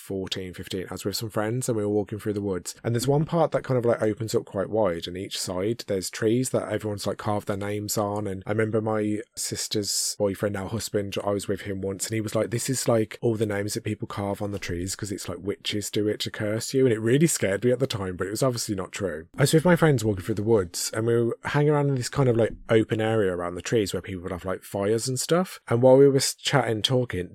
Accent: British